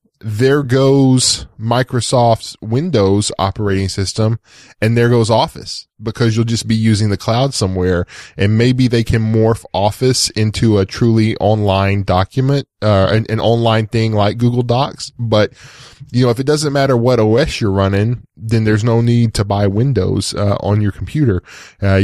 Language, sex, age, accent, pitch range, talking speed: English, male, 10-29, American, 100-130 Hz, 165 wpm